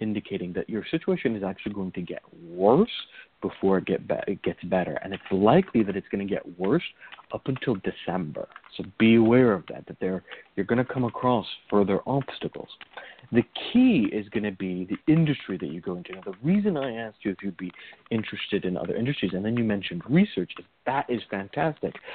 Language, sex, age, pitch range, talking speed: English, male, 40-59, 95-135 Hz, 200 wpm